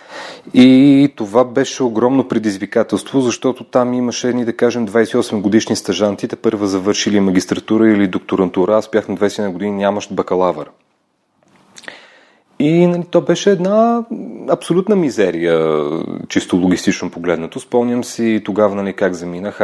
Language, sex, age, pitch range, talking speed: Bulgarian, male, 30-49, 95-110 Hz, 125 wpm